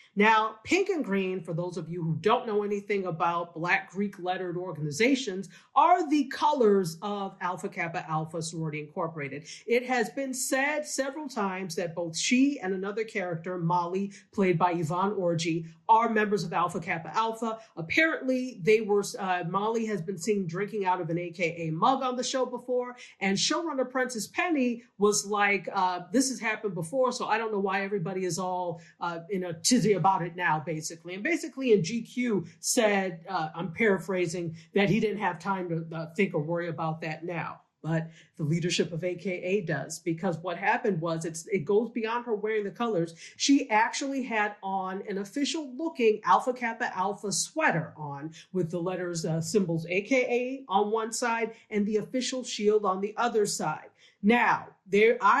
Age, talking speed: 40-59, 175 wpm